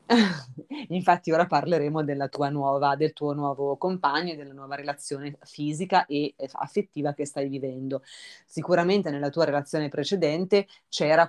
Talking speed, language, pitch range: 140 wpm, Italian, 145-175 Hz